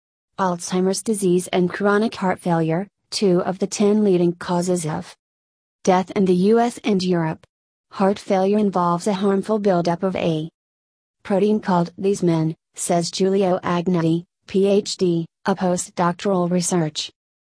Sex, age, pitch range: female, 30-49, 165-195 Hz